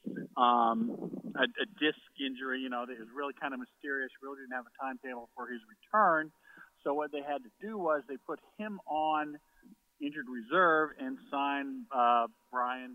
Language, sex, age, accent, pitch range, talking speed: English, male, 50-69, American, 125-170 Hz, 175 wpm